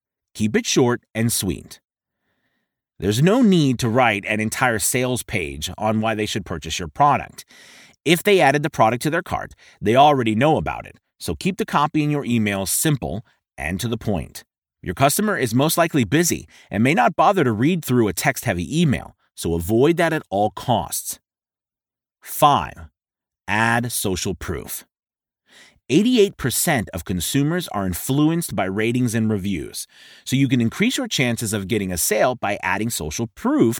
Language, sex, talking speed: English, male, 170 wpm